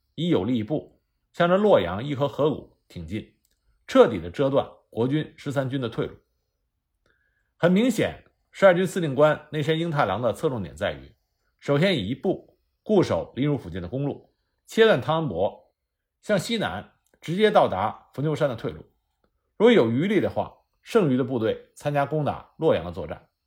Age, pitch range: 50-69, 135-195 Hz